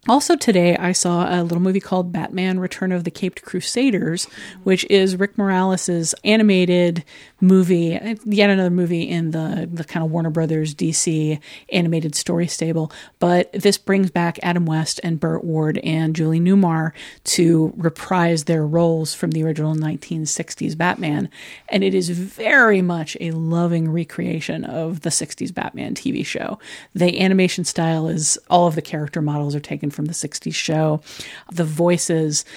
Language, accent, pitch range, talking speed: English, American, 160-185 Hz, 160 wpm